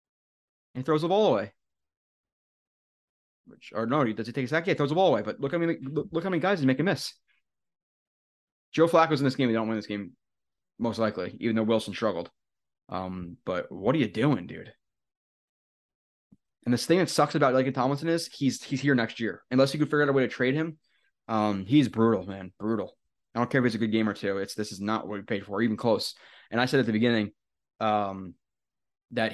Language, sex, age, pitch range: English, male, 20-39, 100-125 Hz